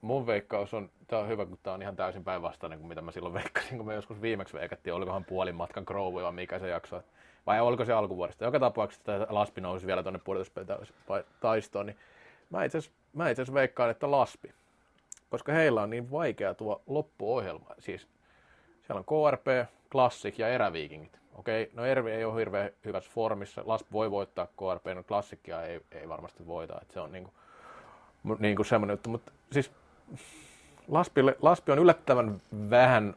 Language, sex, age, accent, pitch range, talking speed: Finnish, male, 30-49, native, 100-120 Hz, 175 wpm